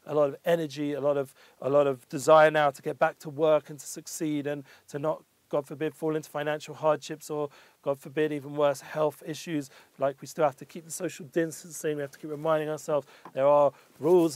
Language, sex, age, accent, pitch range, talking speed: English, male, 40-59, British, 145-165 Hz, 225 wpm